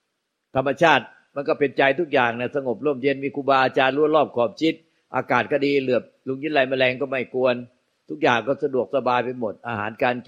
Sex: male